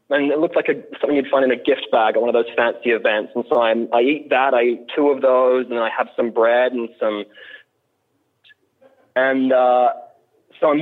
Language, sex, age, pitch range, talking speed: English, male, 20-39, 125-165 Hz, 225 wpm